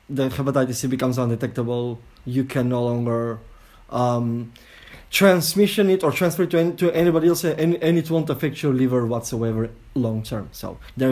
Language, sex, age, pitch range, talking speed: English, male, 20-39, 125-160 Hz, 160 wpm